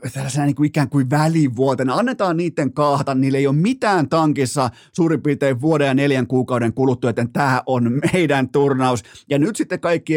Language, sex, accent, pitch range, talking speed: Finnish, male, native, 125-160 Hz, 170 wpm